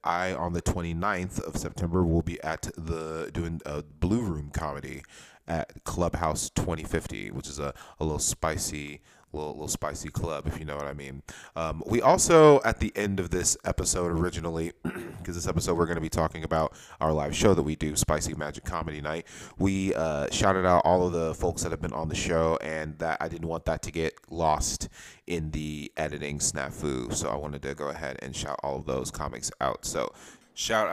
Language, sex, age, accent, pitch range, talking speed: English, male, 30-49, American, 80-95 Hz, 205 wpm